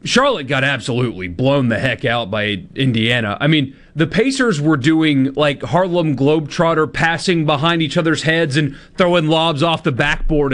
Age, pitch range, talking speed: 30-49, 120-160 Hz, 165 wpm